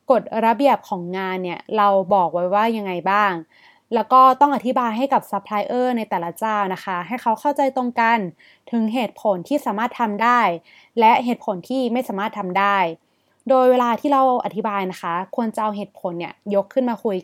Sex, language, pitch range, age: female, Thai, 195-255 Hz, 20-39